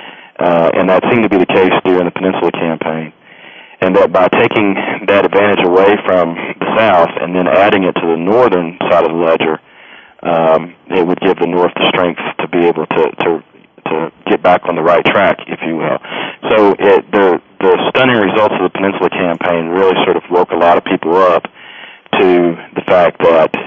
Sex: male